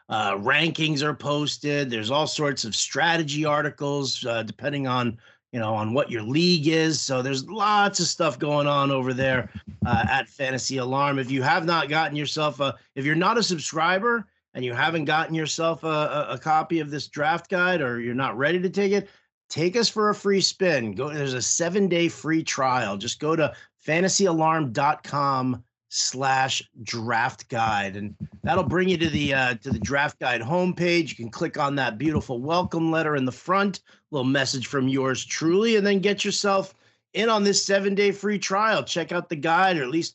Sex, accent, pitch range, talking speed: male, American, 130-175 Hz, 195 wpm